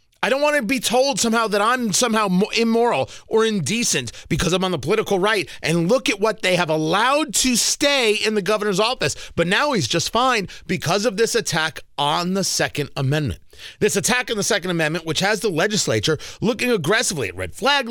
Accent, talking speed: American, 200 wpm